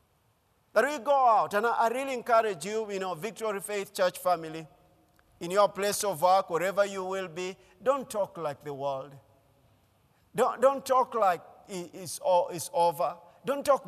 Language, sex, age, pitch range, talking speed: English, male, 50-69, 155-205 Hz, 170 wpm